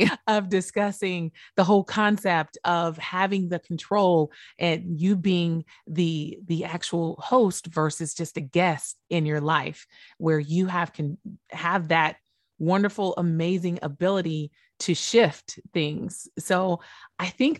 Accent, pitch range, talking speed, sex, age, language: American, 170-215 Hz, 130 wpm, female, 30-49, English